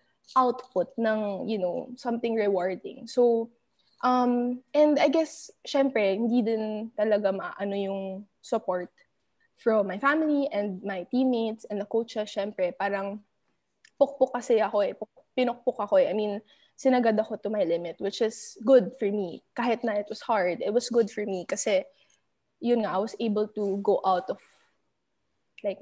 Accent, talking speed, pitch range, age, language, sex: Filipino, 160 wpm, 195-240 Hz, 20-39, English, female